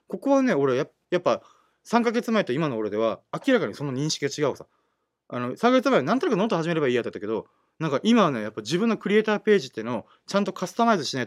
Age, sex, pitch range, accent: 30-49, male, 130-205 Hz, native